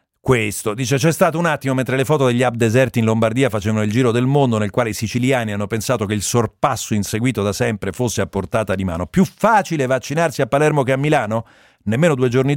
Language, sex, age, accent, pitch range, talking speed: Italian, male, 40-59, native, 110-135 Hz, 225 wpm